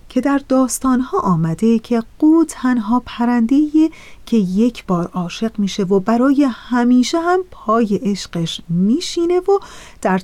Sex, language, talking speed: female, Persian, 130 wpm